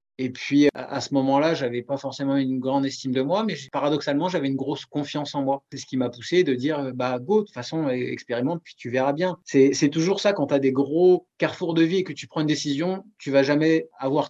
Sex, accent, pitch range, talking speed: male, French, 125-155 Hz, 260 wpm